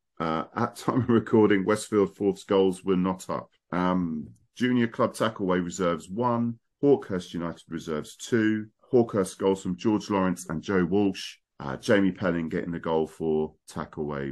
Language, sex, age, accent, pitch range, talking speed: English, male, 40-59, British, 85-105 Hz, 155 wpm